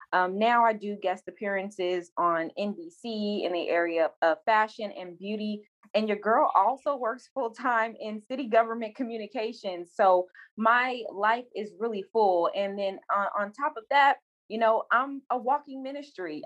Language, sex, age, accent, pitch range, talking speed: English, female, 20-39, American, 180-230 Hz, 170 wpm